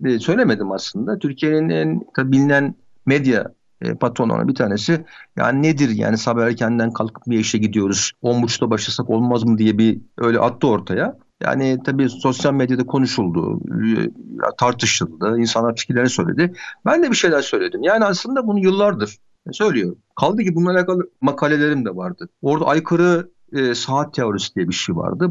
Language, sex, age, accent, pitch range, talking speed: Turkish, male, 50-69, native, 125-195 Hz, 150 wpm